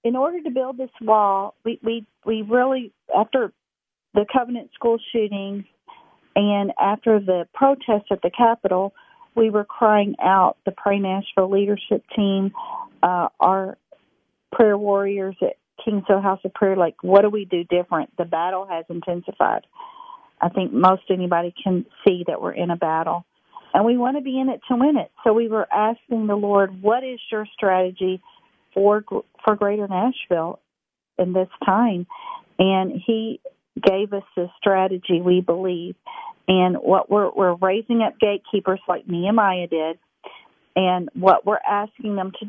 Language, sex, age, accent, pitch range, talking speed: English, female, 40-59, American, 180-225 Hz, 160 wpm